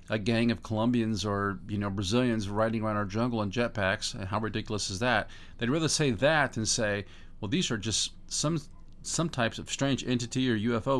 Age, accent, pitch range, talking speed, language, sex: 50-69, American, 100-125 Hz, 200 wpm, English, male